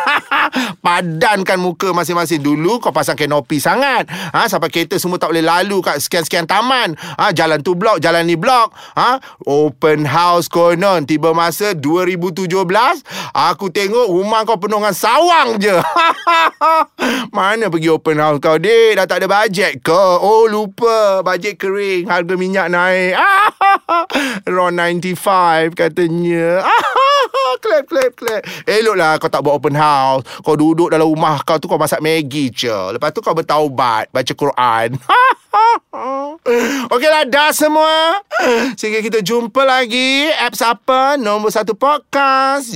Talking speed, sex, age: 140 wpm, male, 30-49